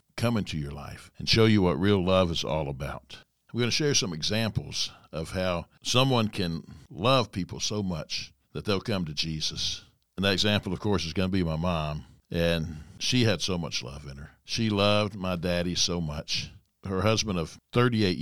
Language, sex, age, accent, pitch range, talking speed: English, male, 60-79, American, 85-105 Hz, 200 wpm